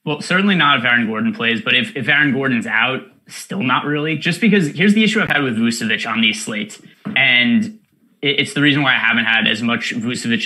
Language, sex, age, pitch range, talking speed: English, male, 20-39, 120-165 Hz, 225 wpm